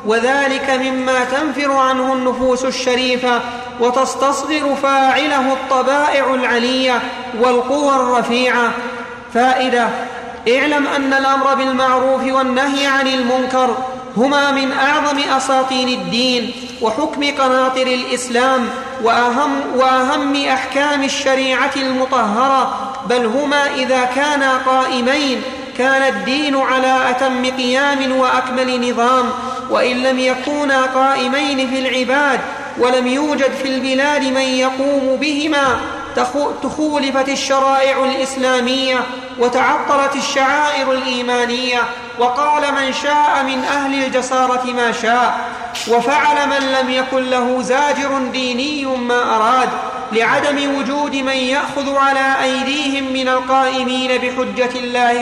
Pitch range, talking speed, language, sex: 250-275 Hz, 100 wpm, Arabic, male